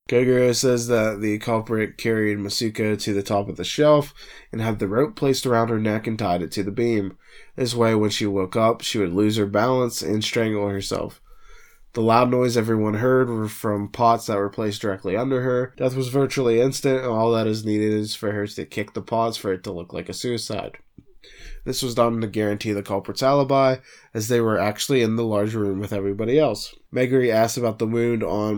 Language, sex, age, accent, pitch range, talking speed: English, male, 20-39, American, 100-120 Hz, 215 wpm